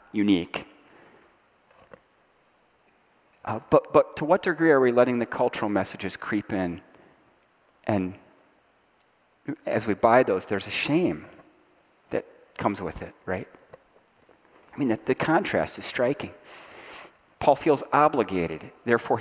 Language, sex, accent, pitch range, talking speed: English, male, American, 105-160 Hz, 120 wpm